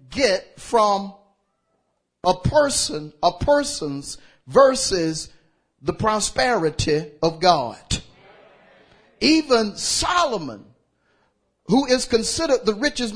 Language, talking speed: English, 80 wpm